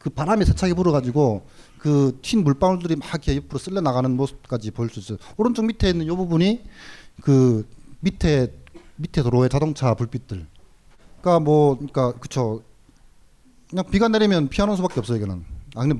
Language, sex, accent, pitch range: Korean, male, native, 120-175 Hz